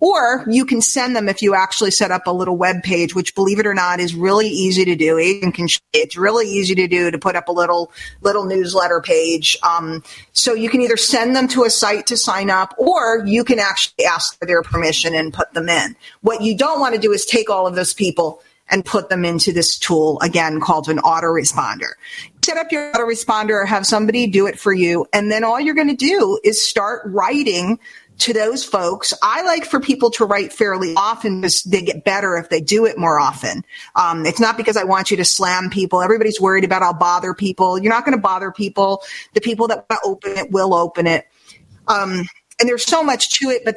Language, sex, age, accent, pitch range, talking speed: English, female, 40-59, American, 185-240 Hz, 225 wpm